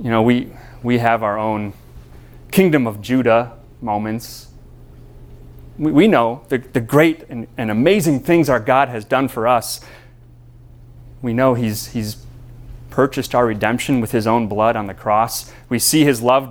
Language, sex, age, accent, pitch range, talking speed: English, male, 30-49, American, 115-130 Hz, 165 wpm